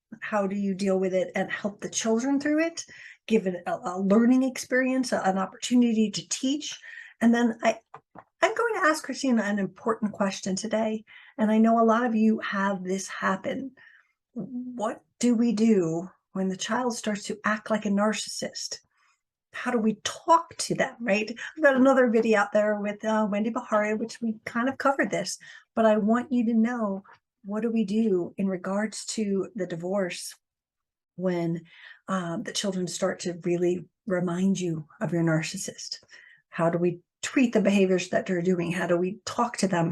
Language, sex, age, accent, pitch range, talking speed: English, female, 50-69, American, 185-235 Hz, 185 wpm